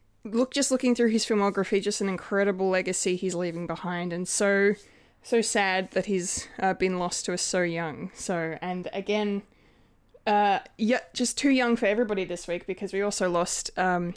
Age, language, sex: 20-39, English, female